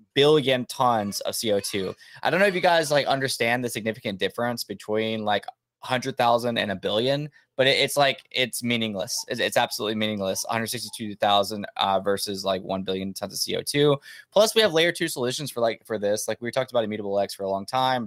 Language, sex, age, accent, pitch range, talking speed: English, male, 20-39, American, 100-130 Hz, 205 wpm